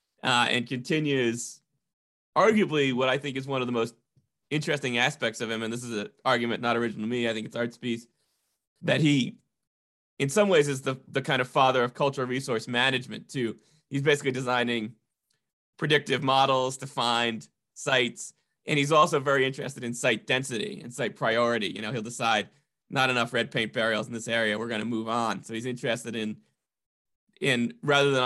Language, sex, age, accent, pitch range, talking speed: English, male, 20-39, American, 120-155 Hz, 190 wpm